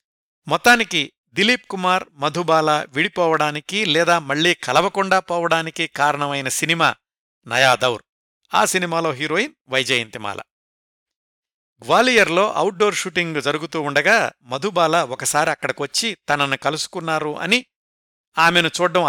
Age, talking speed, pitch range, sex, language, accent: 60-79, 90 wpm, 140-185 Hz, male, Telugu, native